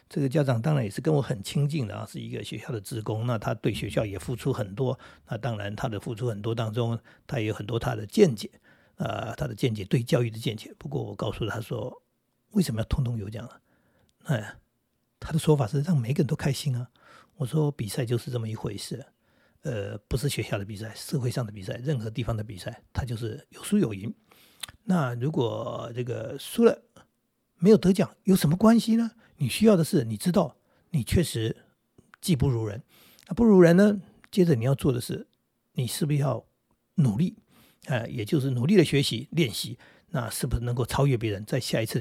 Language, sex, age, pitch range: Chinese, male, 60-79, 115-160 Hz